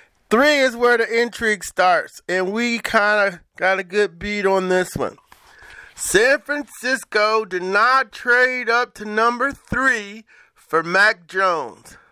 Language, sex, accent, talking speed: English, male, American, 140 wpm